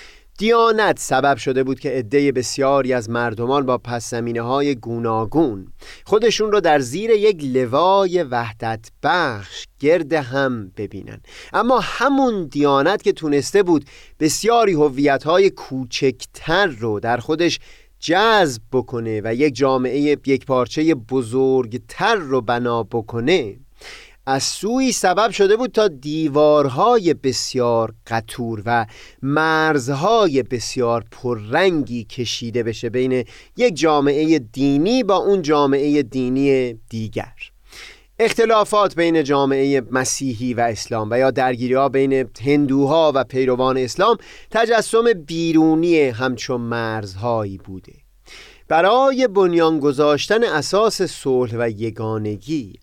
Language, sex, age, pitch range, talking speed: Persian, male, 30-49, 120-165 Hz, 110 wpm